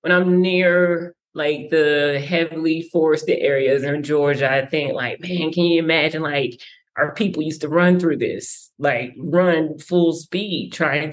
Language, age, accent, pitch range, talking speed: English, 20-39, American, 150-180 Hz, 160 wpm